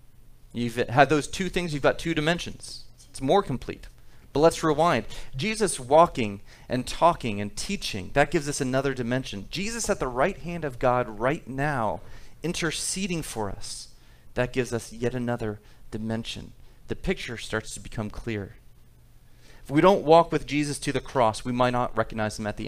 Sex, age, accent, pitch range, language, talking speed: male, 40-59, American, 115-180 Hz, English, 175 wpm